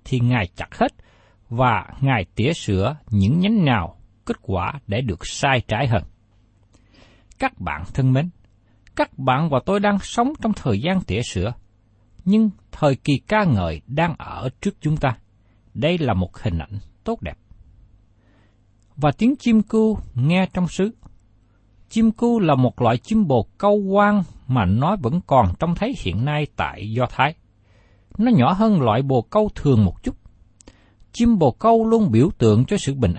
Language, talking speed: Vietnamese, 170 wpm